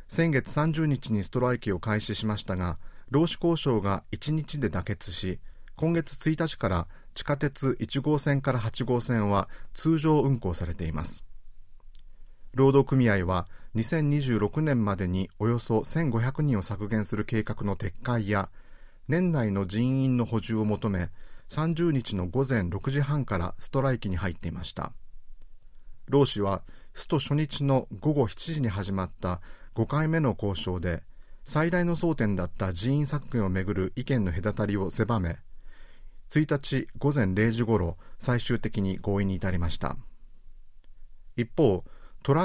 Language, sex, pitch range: Japanese, male, 95-135 Hz